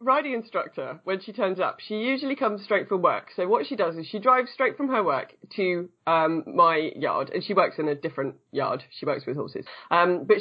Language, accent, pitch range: English, British, 180-245 Hz